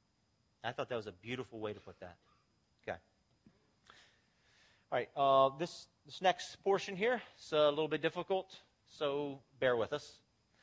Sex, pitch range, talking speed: male, 110-155 Hz, 160 wpm